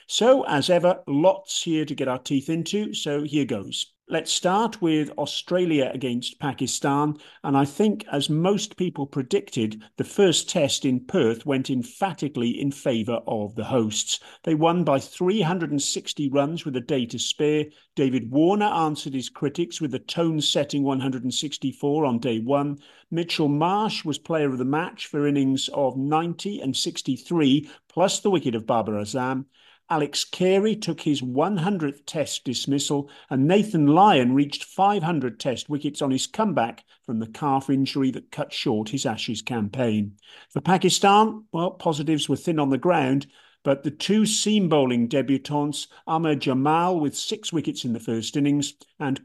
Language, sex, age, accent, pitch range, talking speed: English, male, 50-69, British, 130-170 Hz, 160 wpm